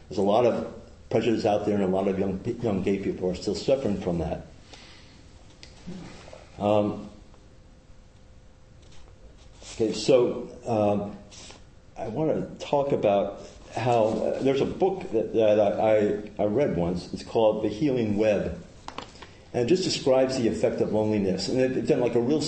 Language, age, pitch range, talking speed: English, 50-69, 100-120 Hz, 160 wpm